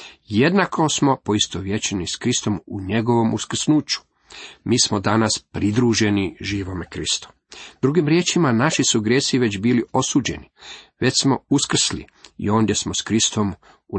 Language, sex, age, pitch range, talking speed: Croatian, male, 40-59, 100-130 Hz, 135 wpm